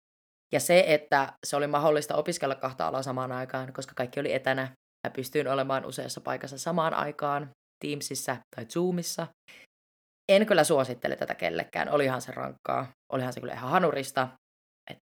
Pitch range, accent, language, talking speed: 140-180 Hz, native, Finnish, 155 wpm